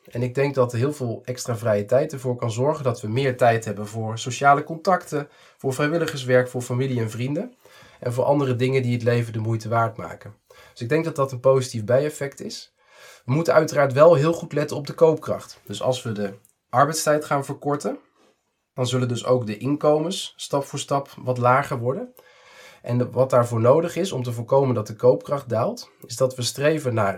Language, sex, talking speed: Dutch, male, 205 wpm